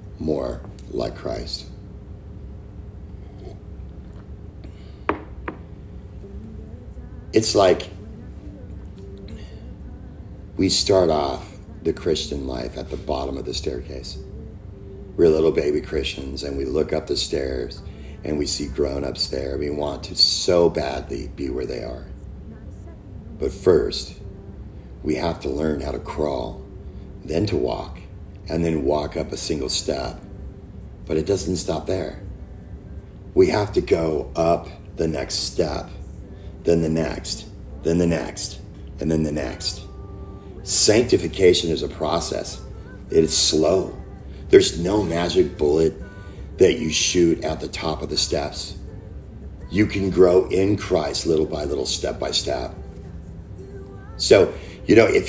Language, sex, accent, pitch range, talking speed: English, male, American, 75-95 Hz, 130 wpm